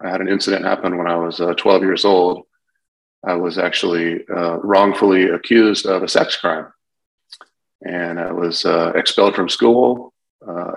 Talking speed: 165 wpm